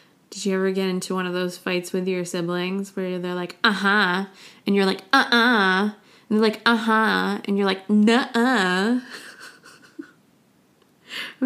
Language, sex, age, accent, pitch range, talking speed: English, female, 20-39, American, 185-230 Hz, 145 wpm